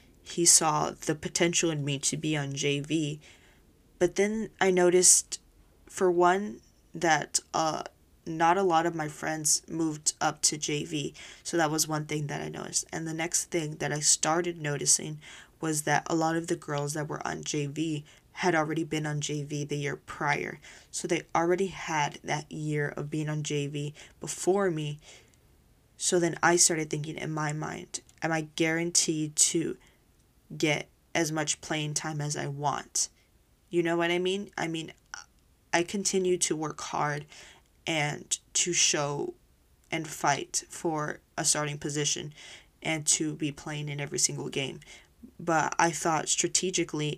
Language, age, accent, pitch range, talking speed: English, 10-29, American, 150-170 Hz, 165 wpm